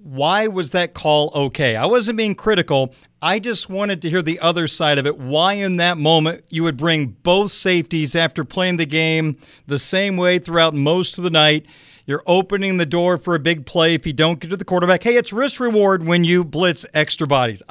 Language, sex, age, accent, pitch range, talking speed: English, male, 40-59, American, 160-205 Hz, 215 wpm